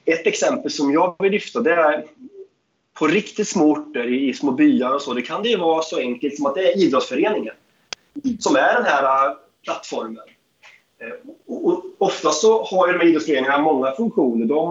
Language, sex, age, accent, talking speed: Swedish, male, 30-49, native, 165 wpm